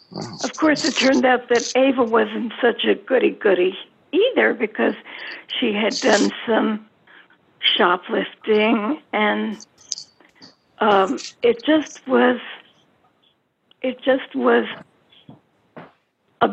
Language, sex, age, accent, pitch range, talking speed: English, female, 60-79, American, 220-275 Hz, 95 wpm